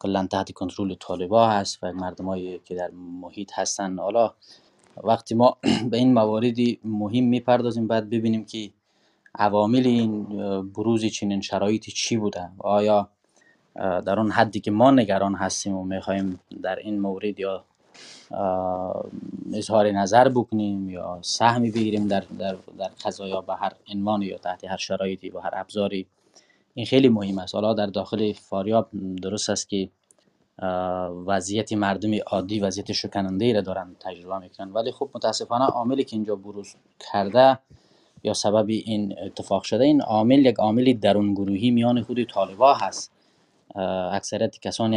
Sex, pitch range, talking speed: male, 95-110 Hz, 145 wpm